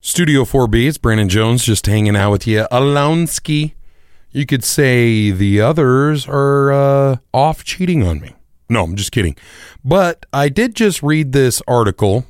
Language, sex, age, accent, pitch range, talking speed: English, male, 30-49, American, 100-150 Hz, 160 wpm